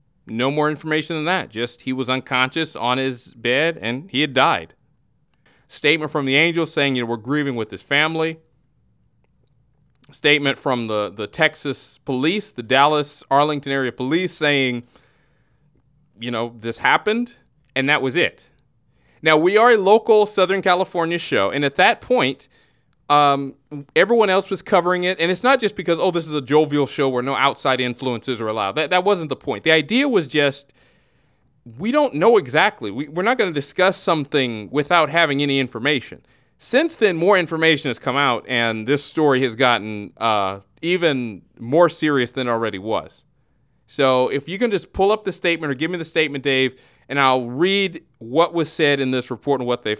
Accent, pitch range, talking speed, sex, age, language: American, 130-170 Hz, 185 wpm, male, 30-49, English